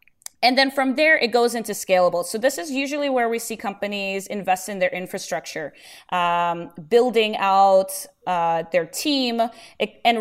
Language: English